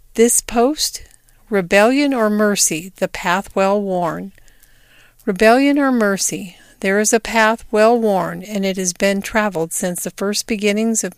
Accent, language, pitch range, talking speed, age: American, English, 195-230 Hz, 150 wpm, 50-69